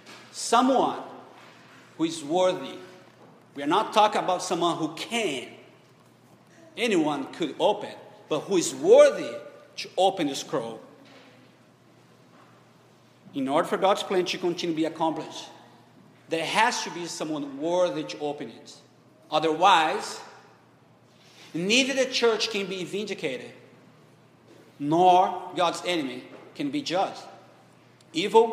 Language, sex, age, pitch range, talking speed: English, male, 50-69, 155-225 Hz, 120 wpm